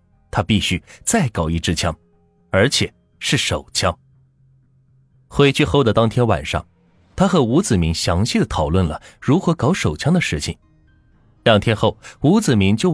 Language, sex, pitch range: Chinese, male, 90-130 Hz